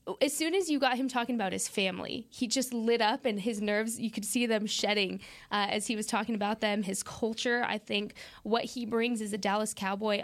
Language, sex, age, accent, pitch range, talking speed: English, female, 20-39, American, 210-250 Hz, 235 wpm